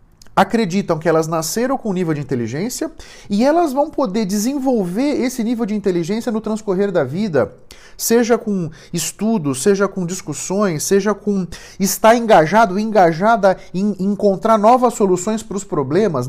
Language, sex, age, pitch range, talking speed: Portuguese, male, 40-59, 170-245 Hz, 145 wpm